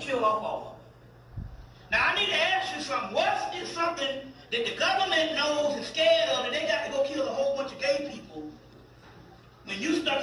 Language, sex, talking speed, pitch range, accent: English, male, 190 wpm, 250-325 Hz, American